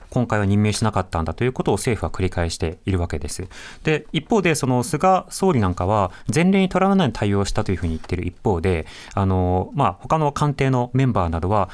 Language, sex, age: Japanese, male, 30-49